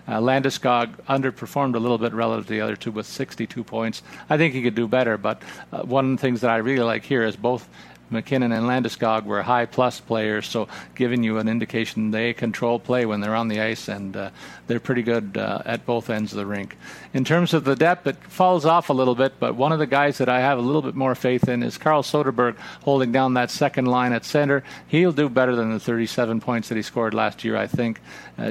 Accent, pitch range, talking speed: American, 115-135 Hz, 245 wpm